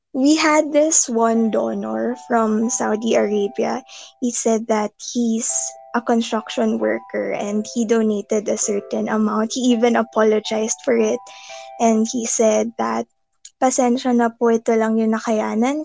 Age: 20-39